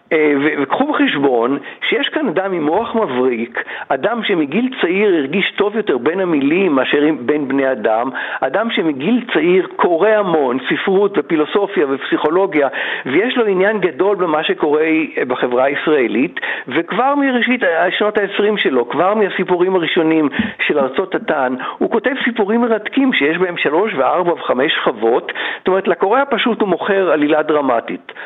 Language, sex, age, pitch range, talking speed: Hebrew, male, 60-79, 150-230 Hz, 140 wpm